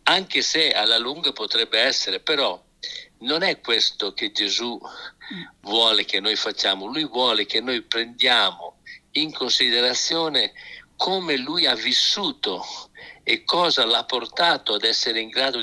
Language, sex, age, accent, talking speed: Italian, male, 50-69, native, 135 wpm